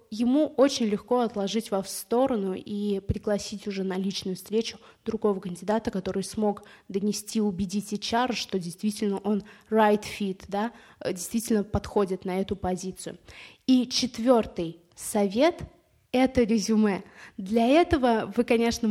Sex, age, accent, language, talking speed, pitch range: female, 20-39, native, Russian, 130 wpm, 200-235 Hz